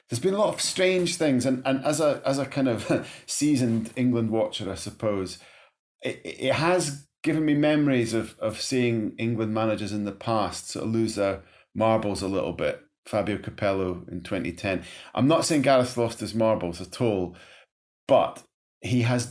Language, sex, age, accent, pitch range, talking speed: English, male, 30-49, British, 100-120 Hz, 180 wpm